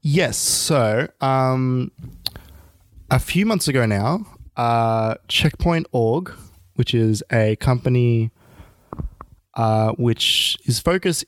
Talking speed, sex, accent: 100 wpm, male, Australian